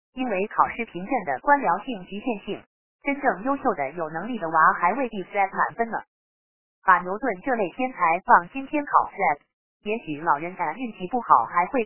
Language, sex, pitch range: Chinese, female, 170-255 Hz